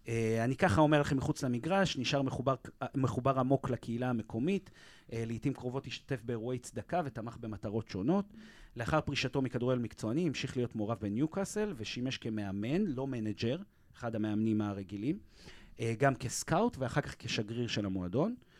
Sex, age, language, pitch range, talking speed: male, 30-49, Hebrew, 115-145 Hz, 145 wpm